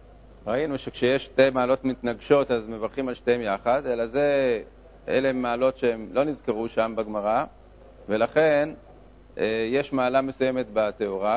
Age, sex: 50-69, male